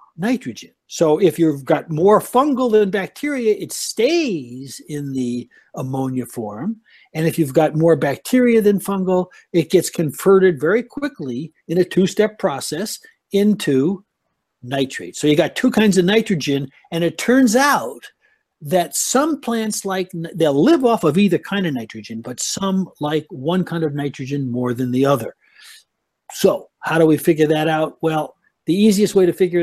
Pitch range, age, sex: 145-200 Hz, 60-79, male